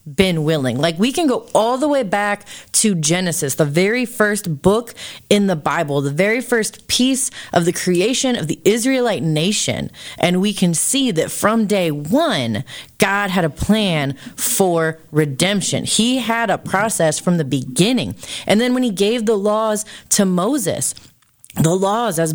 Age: 30-49